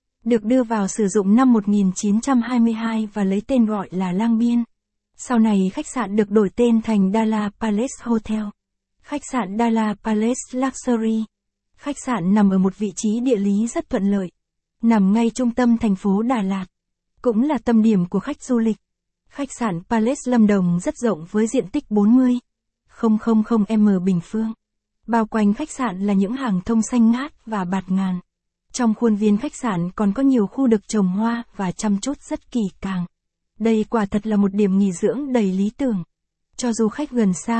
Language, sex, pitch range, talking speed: Vietnamese, female, 205-240 Hz, 190 wpm